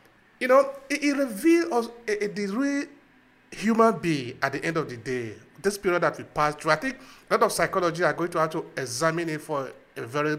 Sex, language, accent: male, English, Nigerian